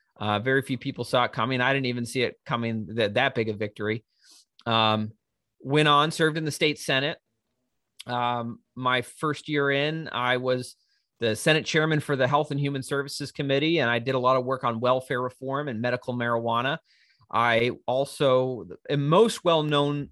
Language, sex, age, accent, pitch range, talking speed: English, male, 30-49, American, 120-155 Hz, 180 wpm